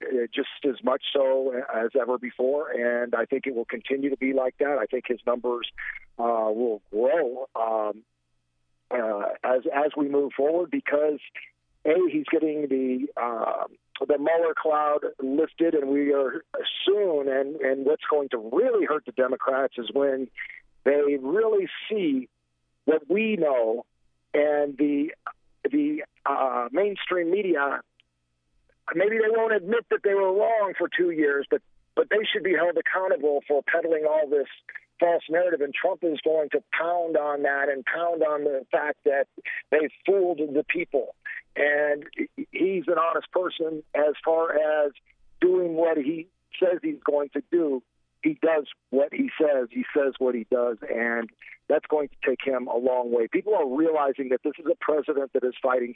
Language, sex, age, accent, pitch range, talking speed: English, male, 50-69, American, 130-175 Hz, 165 wpm